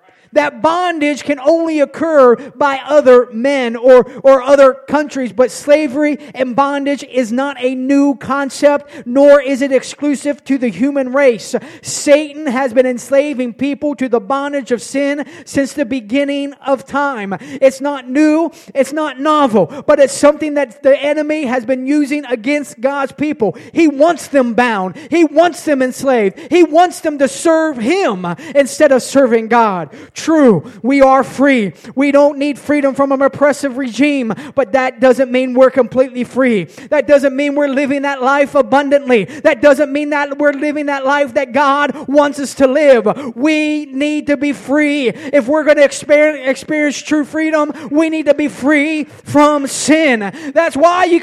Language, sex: English, male